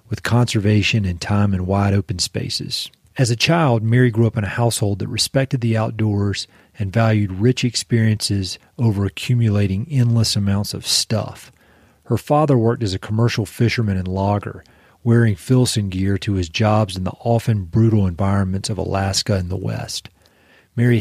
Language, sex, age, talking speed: English, male, 40-59, 165 wpm